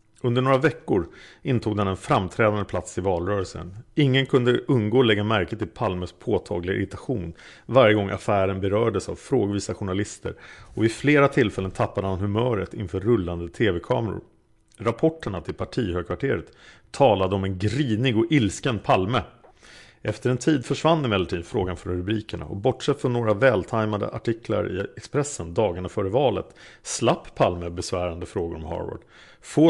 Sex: male